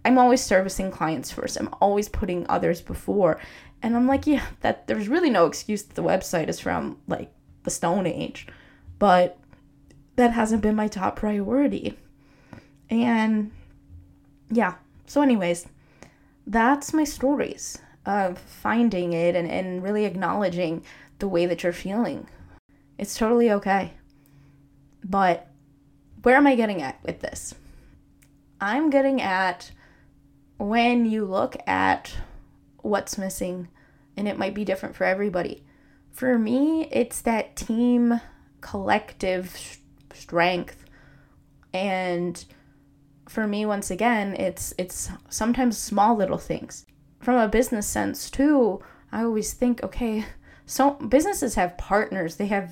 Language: English